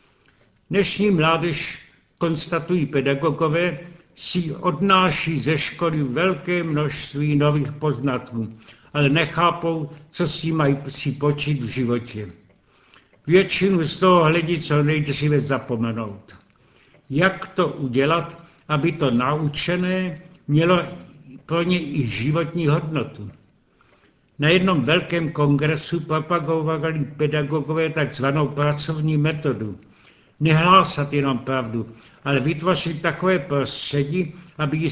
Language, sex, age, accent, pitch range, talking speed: Czech, male, 70-89, native, 140-170 Hz, 100 wpm